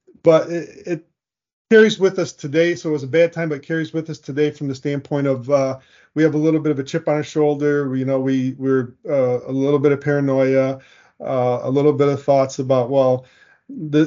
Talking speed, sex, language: 240 wpm, male, English